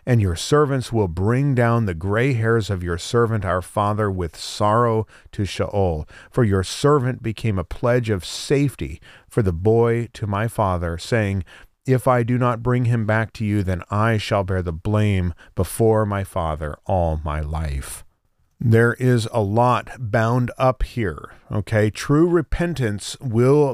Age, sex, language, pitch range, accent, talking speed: 40-59, male, English, 95-125 Hz, American, 165 wpm